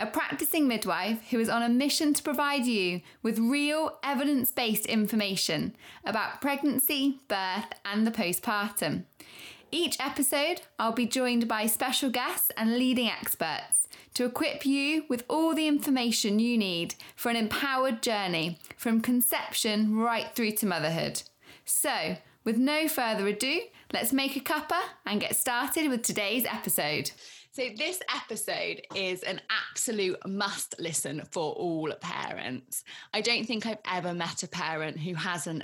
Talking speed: 145 wpm